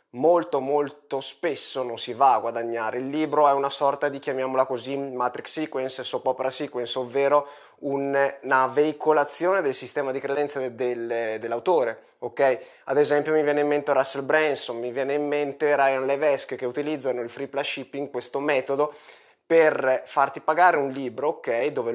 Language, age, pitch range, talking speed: Italian, 20-39, 140-185 Hz, 160 wpm